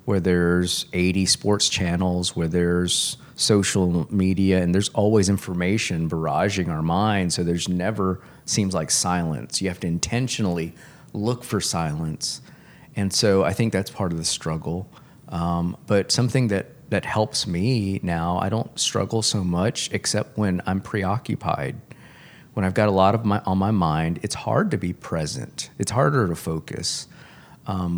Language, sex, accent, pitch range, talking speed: English, male, American, 90-120 Hz, 160 wpm